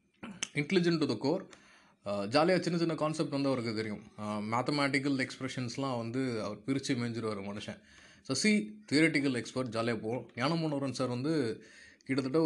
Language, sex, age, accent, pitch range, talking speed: Tamil, male, 20-39, native, 115-145 Hz, 145 wpm